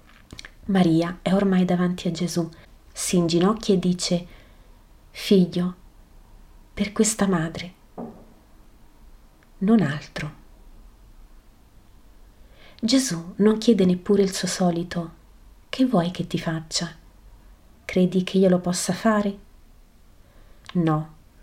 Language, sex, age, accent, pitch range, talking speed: Italian, female, 30-49, native, 165-205 Hz, 100 wpm